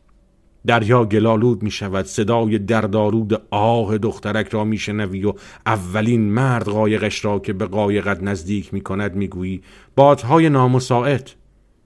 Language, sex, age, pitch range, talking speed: Persian, male, 50-69, 100-120 Hz, 115 wpm